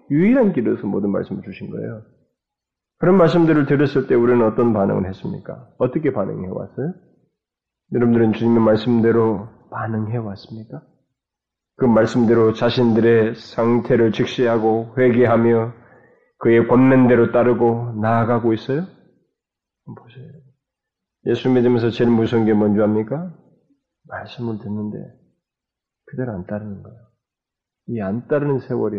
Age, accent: 30-49, native